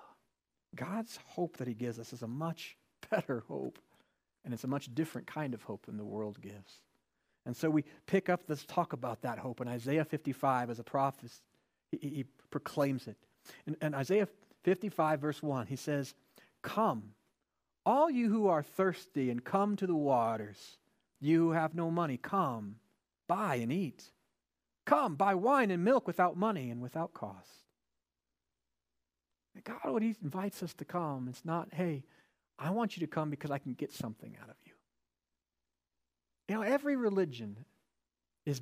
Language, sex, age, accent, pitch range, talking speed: English, male, 40-59, American, 120-190 Hz, 170 wpm